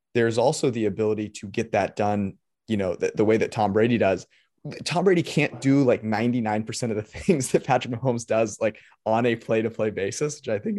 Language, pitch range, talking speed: English, 105-125 Hz, 220 wpm